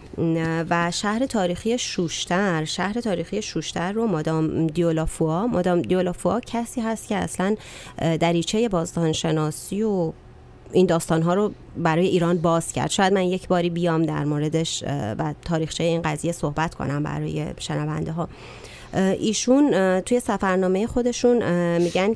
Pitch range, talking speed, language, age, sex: 160-195 Hz, 125 wpm, Persian, 30-49, female